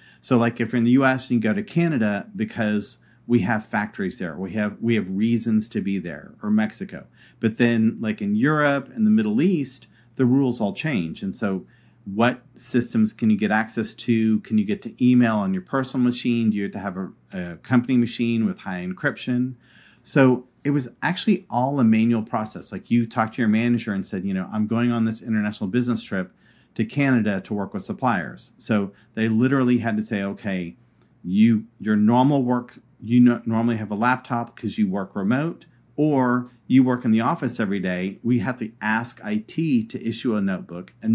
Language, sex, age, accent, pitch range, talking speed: English, male, 40-59, American, 110-135 Hz, 205 wpm